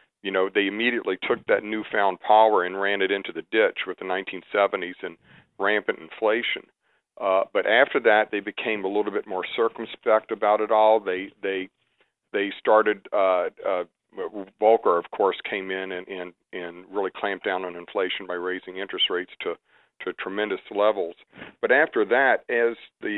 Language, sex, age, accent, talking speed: English, male, 50-69, American, 170 wpm